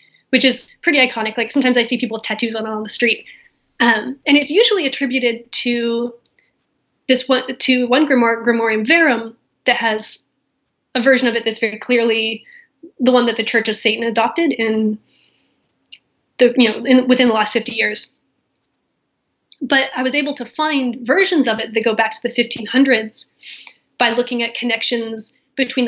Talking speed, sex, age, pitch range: 175 wpm, female, 10-29, 230-270 Hz